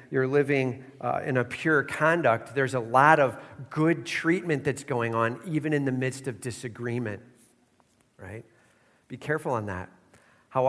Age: 40-59